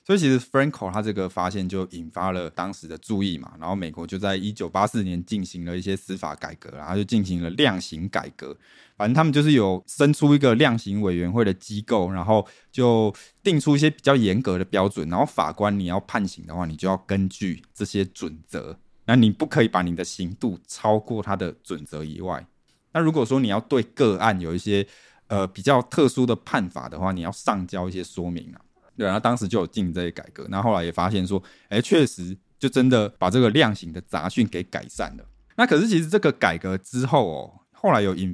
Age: 20-39